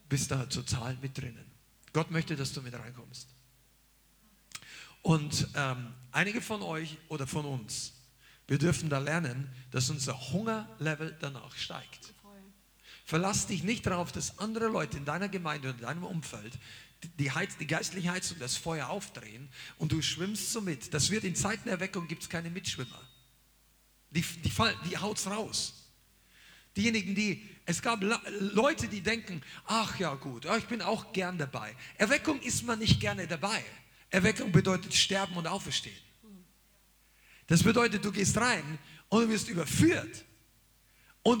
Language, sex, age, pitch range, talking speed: German, male, 50-69, 135-210 Hz, 155 wpm